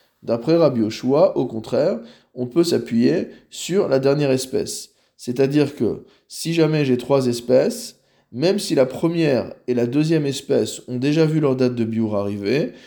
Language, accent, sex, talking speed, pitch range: French, French, male, 165 wpm, 115-150 Hz